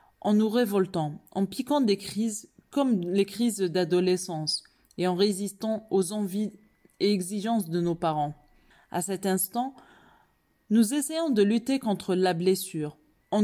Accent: French